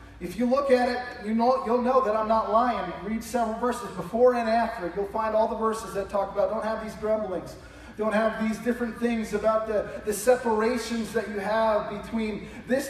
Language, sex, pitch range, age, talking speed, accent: English, male, 220-250 Hz, 30-49, 200 wpm, American